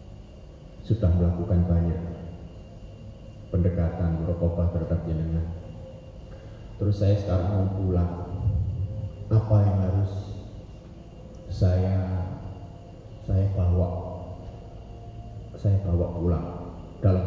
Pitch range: 85-105 Hz